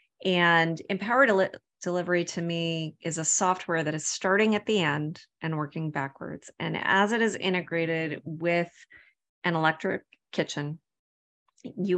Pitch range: 155-185 Hz